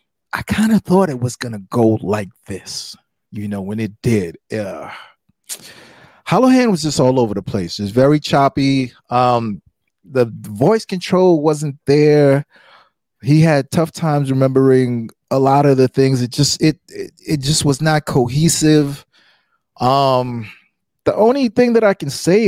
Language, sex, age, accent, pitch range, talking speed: English, male, 30-49, American, 120-160 Hz, 160 wpm